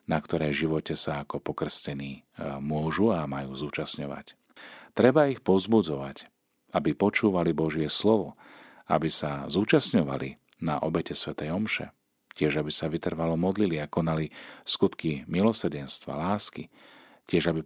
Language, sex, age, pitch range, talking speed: Slovak, male, 40-59, 75-95 Hz, 120 wpm